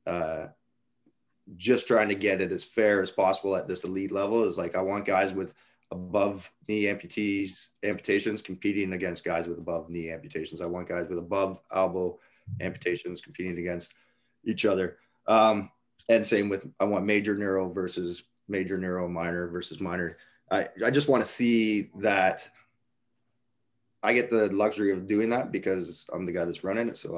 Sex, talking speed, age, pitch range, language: male, 170 wpm, 30-49, 90-110 Hz, English